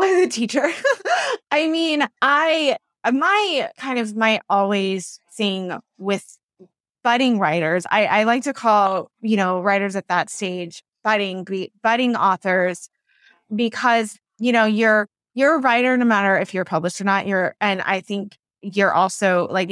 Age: 20-39